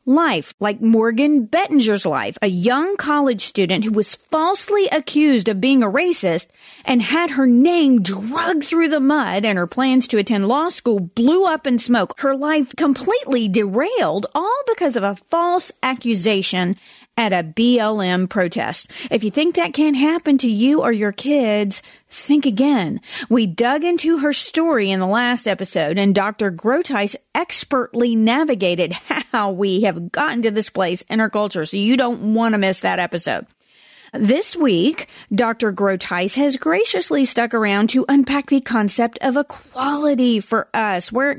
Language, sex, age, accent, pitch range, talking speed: English, female, 40-59, American, 210-285 Hz, 165 wpm